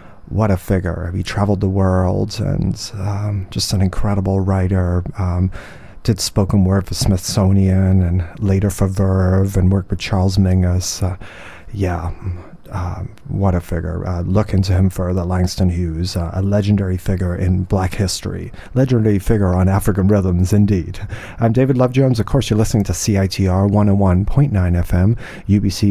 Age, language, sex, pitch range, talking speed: 30-49, English, male, 95-105 Hz, 155 wpm